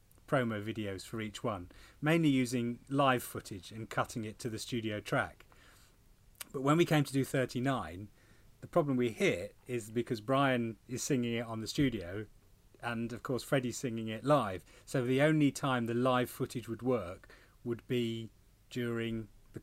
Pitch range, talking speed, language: 105-130 Hz, 170 wpm, English